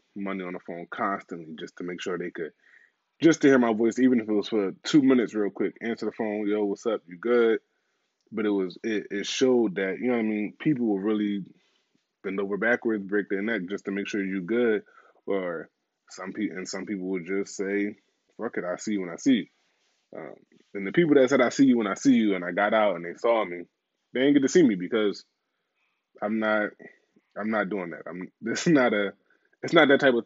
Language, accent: English, American